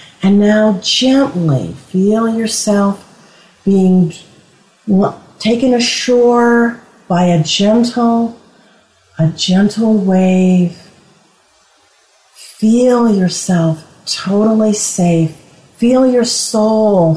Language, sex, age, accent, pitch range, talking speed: English, female, 40-59, American, 180-225 Hz, 75 wpm